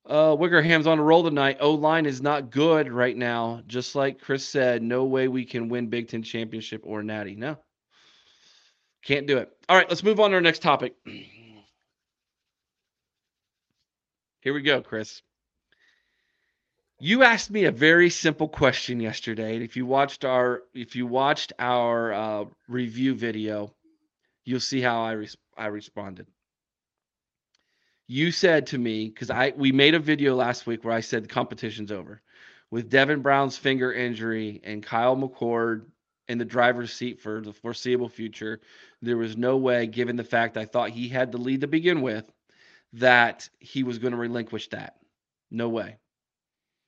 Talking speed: 165 wpm